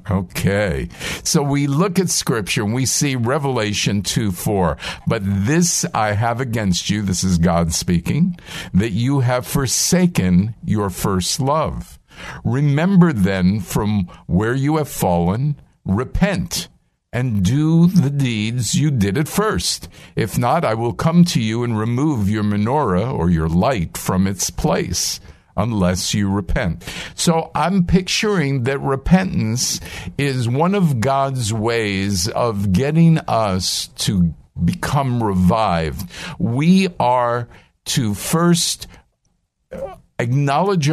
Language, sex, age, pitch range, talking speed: English, male, 50-69, 95-155 Hz, 125 wpm